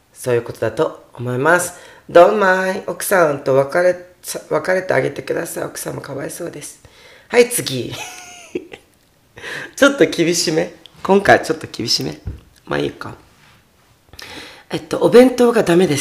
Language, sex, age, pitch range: Japanese, female, 40-59, 135-205 Hz